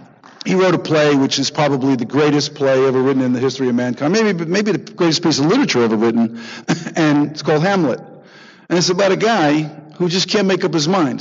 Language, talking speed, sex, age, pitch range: English, 225 wpm, male, 50-69, 145-190 Hz